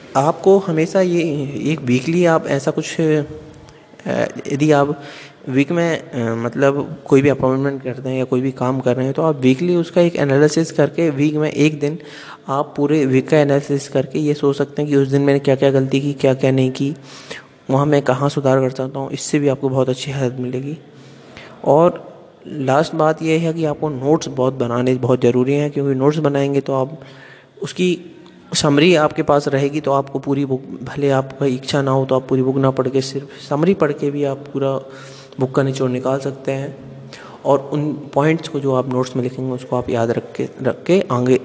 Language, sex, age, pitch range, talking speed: Hindi, male, 20-39, 130-150 Hz, 200 wpm